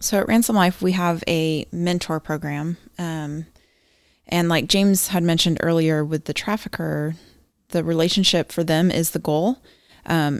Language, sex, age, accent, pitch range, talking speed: English, female, 20-39, American, 155-175 Hz, 155 wpm